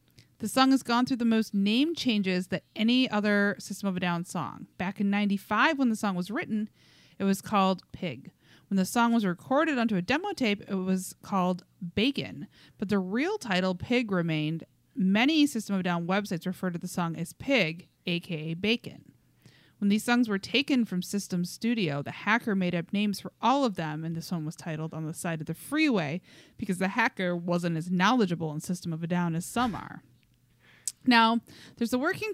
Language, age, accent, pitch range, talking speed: English, 30-49, American, 170-225 Hz, 200 wpm